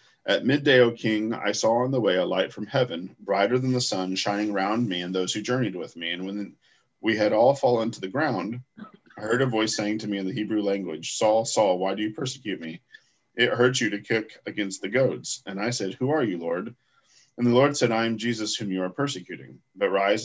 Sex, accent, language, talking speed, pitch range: male, American, English, 240 wpm, 95-125 Hz